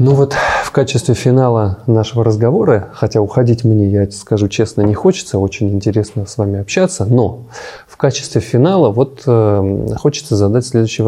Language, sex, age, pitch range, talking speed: Russian, male, 20-39, 110-135 Hz, 155 wpm